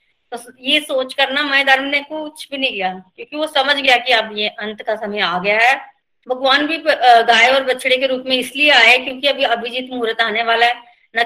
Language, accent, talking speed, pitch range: Hindi, native, 215 wpm, 220-265 Hz